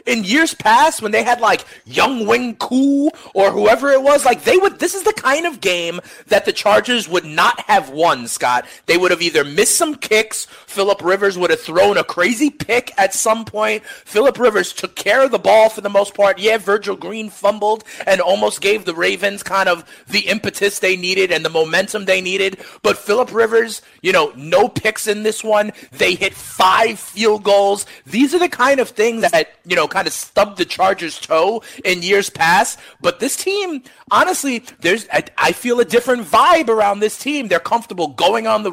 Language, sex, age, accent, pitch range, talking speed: English, male, 30-49, American, 180-240 Hz, 205 wpm